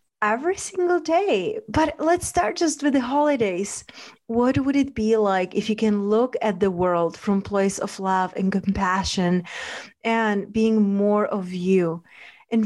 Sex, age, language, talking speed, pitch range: female, 30-49, English, 160 wpm, 190-225 Hz